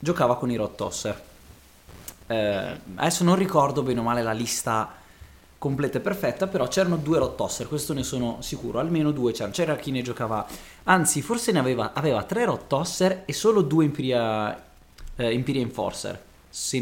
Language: Italian